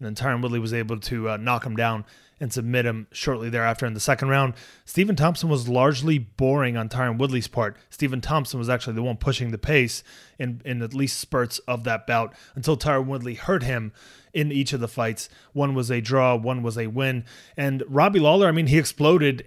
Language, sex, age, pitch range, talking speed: English, male, 30-49, 120-140 Hz, 220 wpm